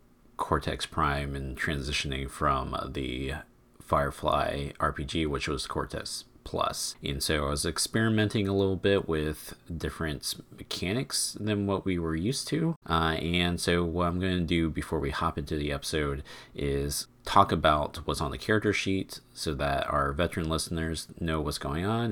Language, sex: English, male